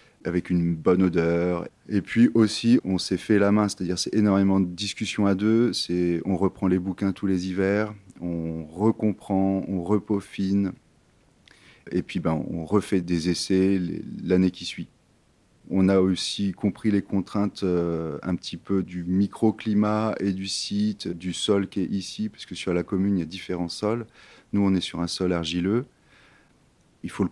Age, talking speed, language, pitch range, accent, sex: 30-49, 180 wpm, French, 85-100 Hz, French, male